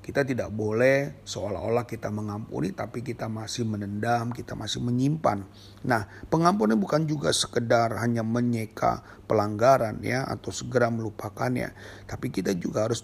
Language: Indonesian